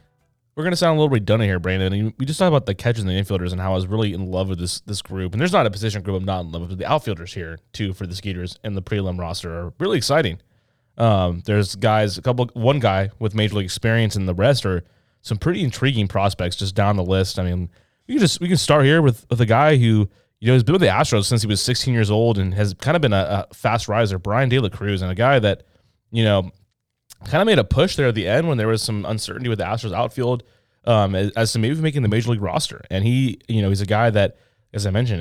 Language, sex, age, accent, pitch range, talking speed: English, male, 20-39, American, 100-125 Hz, 280 wpm